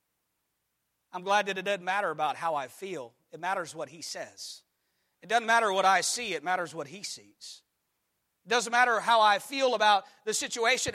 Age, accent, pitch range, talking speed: 40-59, American, 165-225 Hz, 190 wpm